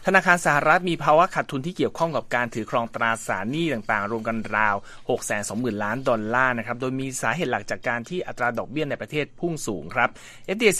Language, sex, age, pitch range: Thai, male, 30-49, 115-150 Hz